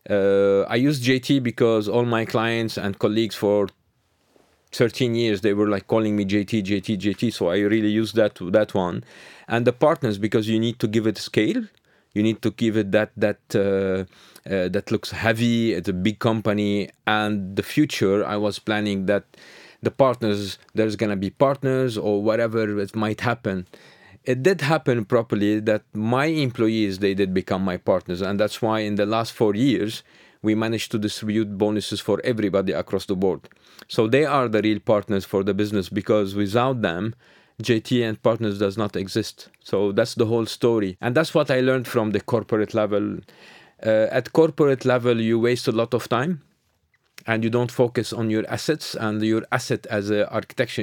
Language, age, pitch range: English, 40-59, 105-120 Hz